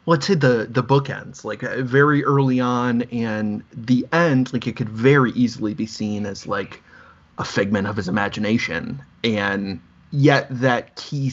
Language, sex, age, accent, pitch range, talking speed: English, male, 30-49, American, 110-140 Hz, 165 wpm